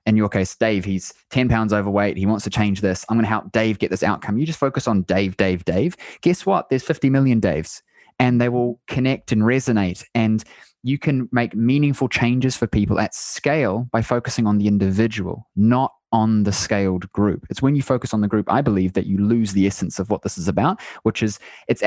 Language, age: English, 20-39